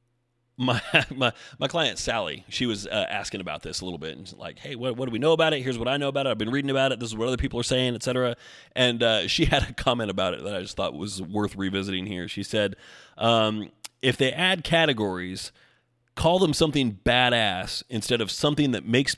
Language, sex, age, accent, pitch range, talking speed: English, male, 30-49, American, 100-120 Hz, 240 wpm